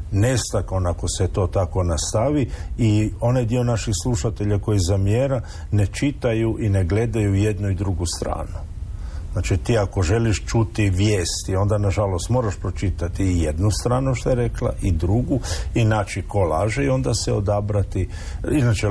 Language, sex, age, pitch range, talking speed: Croatian, male, 50-69, 85-105 Hz, 150 wpm